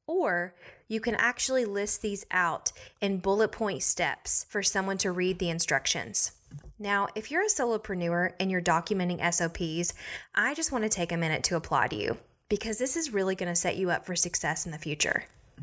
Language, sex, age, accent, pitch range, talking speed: English, female, 20-39, American, 175-230 Hz, 190 wpm